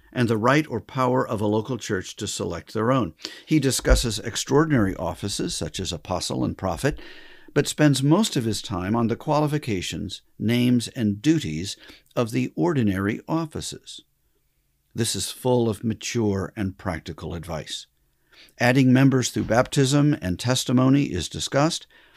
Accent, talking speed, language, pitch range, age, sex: American, 145 wpm, English, 100-135 Hz, 50-69, male